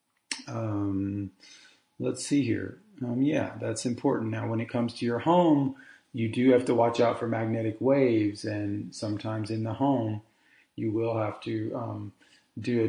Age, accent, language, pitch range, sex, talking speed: 40-59, American, English, 100-125 Hz, male, 170 wpm